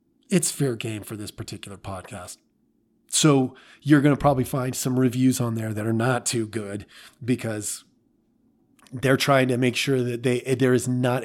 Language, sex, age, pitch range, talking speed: English, male, 30-49, 110-140 Hz, 175 wpm